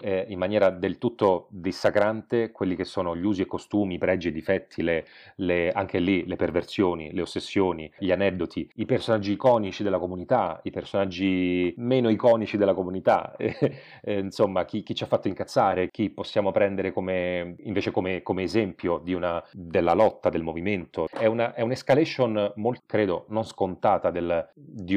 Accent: native